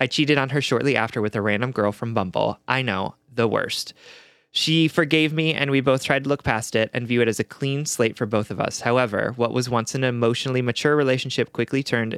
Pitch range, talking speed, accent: 110-140 Hz, 235 wpm, American